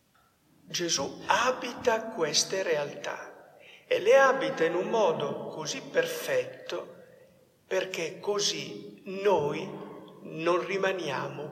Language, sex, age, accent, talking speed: Italian, male, 60-79, native, 90 wpm